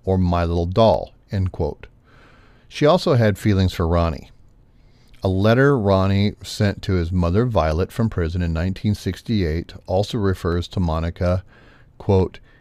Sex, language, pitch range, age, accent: male, Japanese, 90-115 Hz, 40-59, American